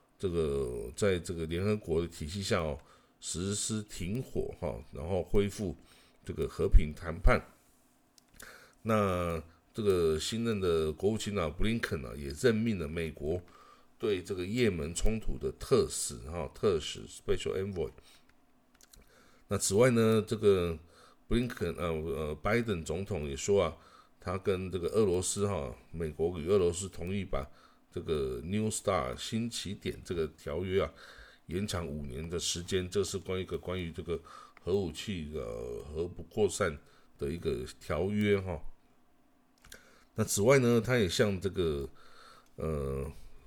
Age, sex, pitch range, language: 50-69, male, 80-105 Hz, Chinese